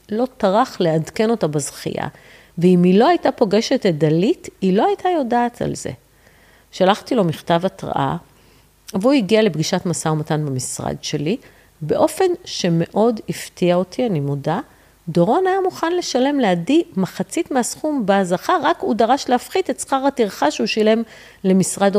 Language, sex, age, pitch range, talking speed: Hebrew, female, 40-59, 165-225 Hz, 145 wpm